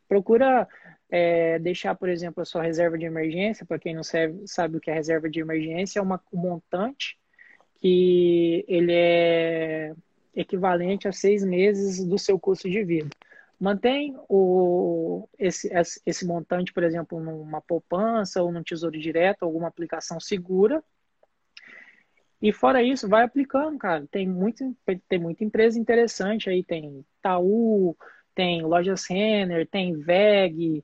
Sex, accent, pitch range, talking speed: male, Brazilian, 170-205 Hz, 140 wpm